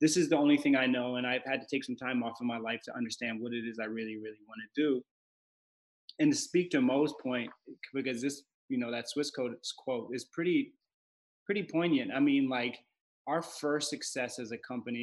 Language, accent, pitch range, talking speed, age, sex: English, American, 125-160 Hz, 225 wpm, 20-39, male